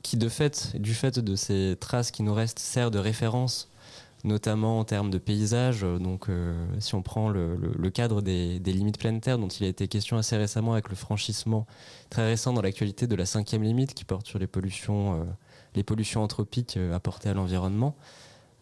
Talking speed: 190 wpm